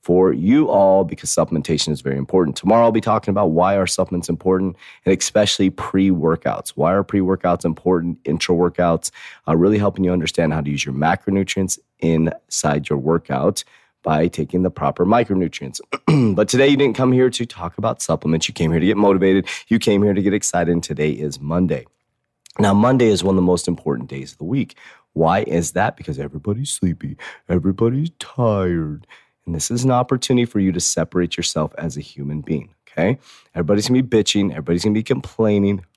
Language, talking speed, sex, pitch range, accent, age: English, 185 wpm, male, 85-105 Hz, American, 30-49